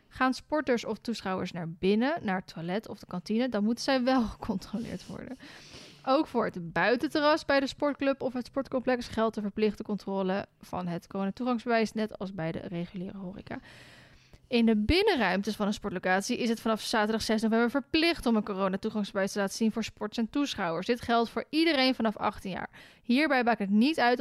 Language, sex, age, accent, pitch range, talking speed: Dutch, female, 10-29, Dutch, 195-250 Hz, 190 wpm